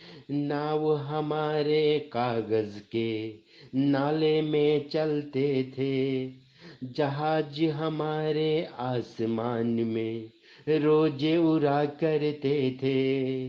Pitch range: 135-165 Hz